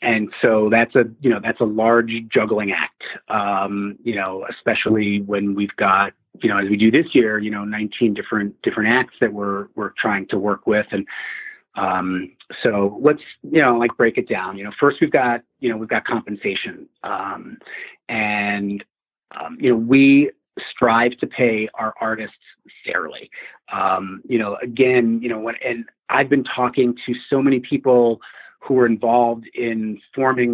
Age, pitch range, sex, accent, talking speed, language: 30-49, 105-130 Hz, male, American, 175 wpm, English